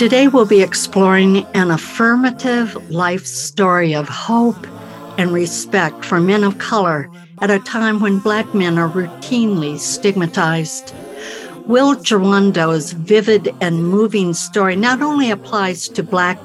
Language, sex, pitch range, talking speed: English, female, 175-225 Hz, 130 wpm